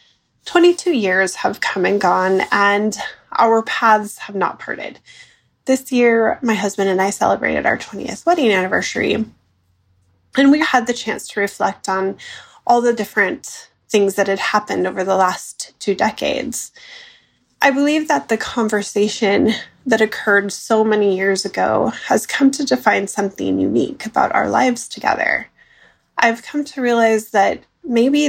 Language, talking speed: English, 150 wpm